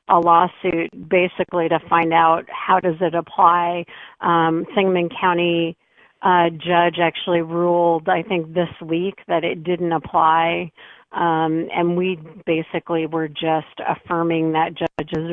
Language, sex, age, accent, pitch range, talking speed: English, female, 40-59, American, 165-180 Hz, 135 wpm